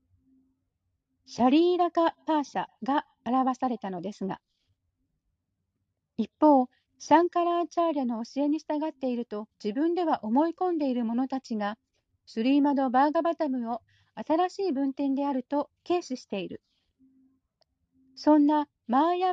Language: Japanese